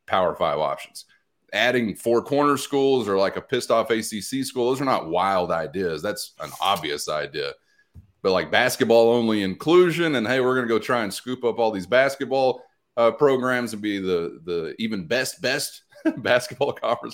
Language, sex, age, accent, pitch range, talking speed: English, male, 30-49, American, 100-140 Hz, 180 wpm